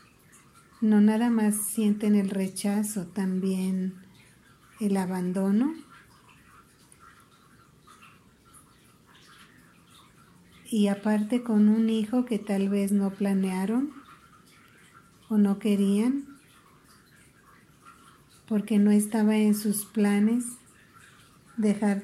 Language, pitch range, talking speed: Spanish, 195-215 Hz, 80 wpm